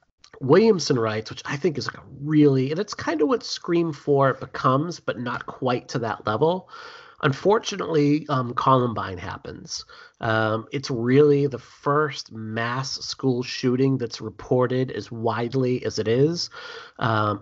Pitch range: 110-145 Hz